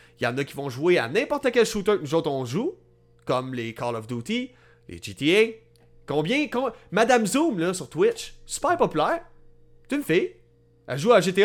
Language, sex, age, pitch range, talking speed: French, male, 30-49, 130-185 Hz, 200 wpm